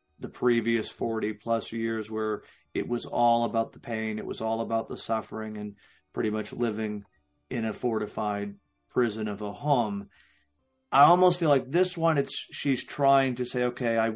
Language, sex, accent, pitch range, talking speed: English, male, American, 115-130 Hz, 180 wpm